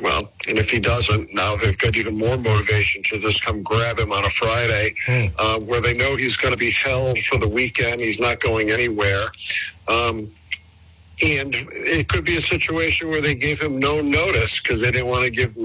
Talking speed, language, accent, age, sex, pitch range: 210 wpm, English, American, 50-69, male, 105-125 Hz